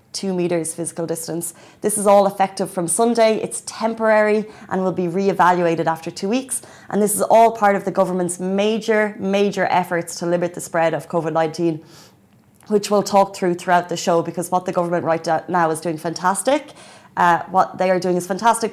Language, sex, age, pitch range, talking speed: Arabic, female, 20-39, 175-200 Hz, 190 wpm